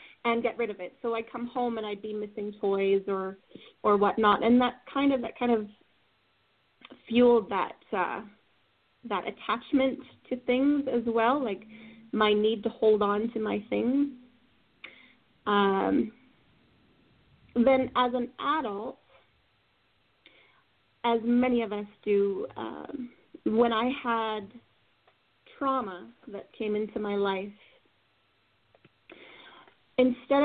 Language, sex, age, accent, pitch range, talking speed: English, female, 30-49, American, 205-245 Hz, 125 wpm